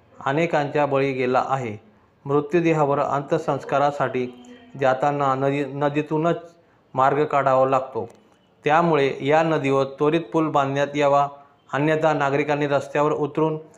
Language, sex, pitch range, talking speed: Marathi, male, 135-160 Hz, 100 wpm